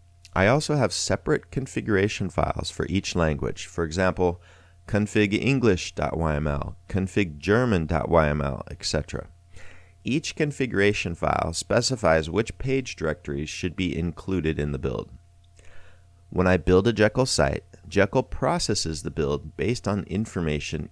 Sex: male